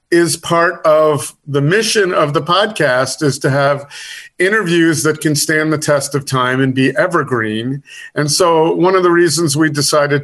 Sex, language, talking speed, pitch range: male, English, 175 wpm, 135-170 Hz